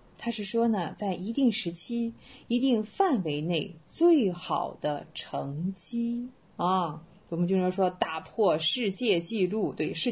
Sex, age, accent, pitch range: female, 30-49, native, 170-240 Hz